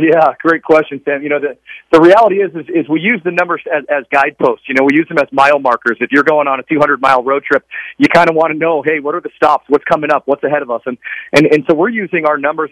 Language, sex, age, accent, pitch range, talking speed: English, male, 40-59, American, 140-170 Hz, 290 wpm